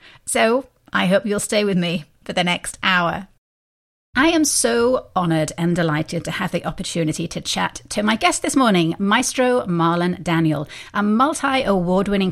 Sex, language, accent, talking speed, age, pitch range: female, English, British, 160 wpm, 40-59, 175-245 Hz